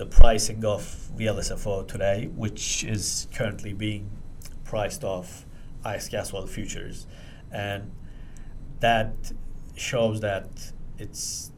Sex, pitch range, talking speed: male, 95-110 Hz, 100 wpm